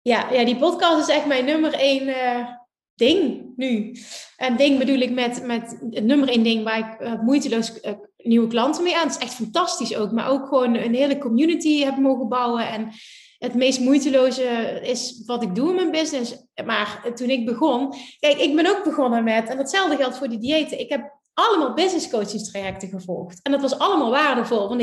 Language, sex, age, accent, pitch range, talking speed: Dutch, female, 30-49, Dutch, 230-290 Hz, 205 wpm